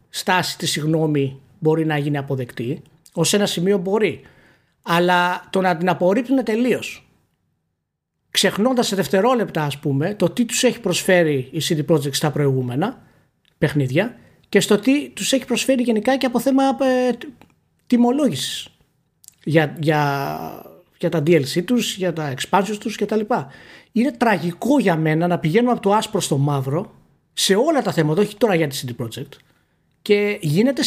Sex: male